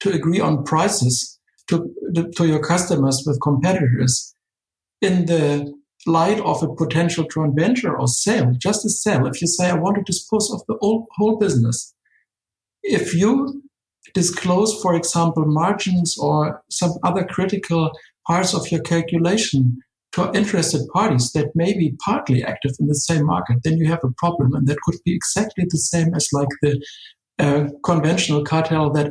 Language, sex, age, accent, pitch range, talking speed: English, male, 60-79, German, 155-195 Hz, 165 wpm